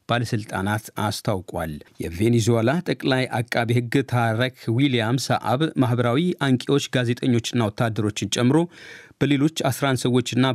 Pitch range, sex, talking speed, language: 105-130 Hz, male, 95 wpm, Amharic